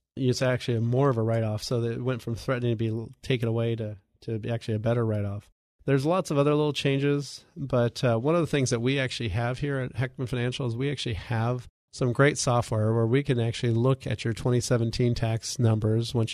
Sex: male